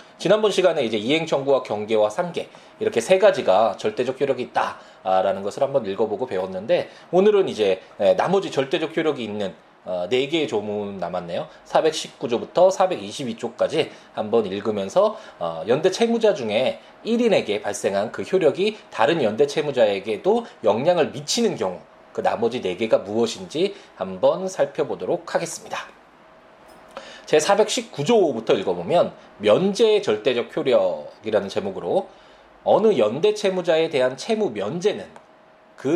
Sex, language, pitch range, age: male, Korean, 125-205 Hz, 20-39